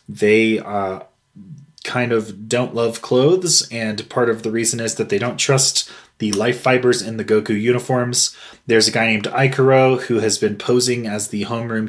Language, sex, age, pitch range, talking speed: English, male, 20-39, 110-135 Hz, 180 wpm